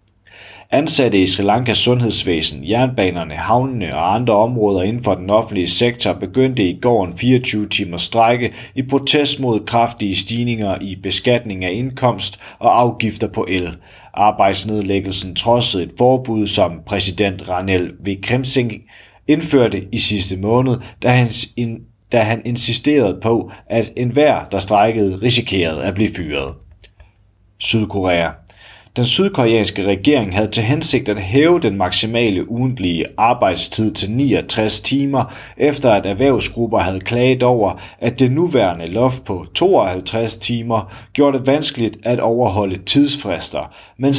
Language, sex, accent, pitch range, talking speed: Danish, male, native, 95-120 Hz, 130 wpm